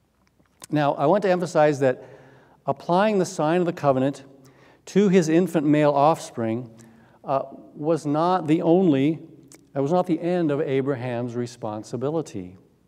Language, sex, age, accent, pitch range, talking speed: English, male, 50-69, American, 130-170 Hz, 140 wpm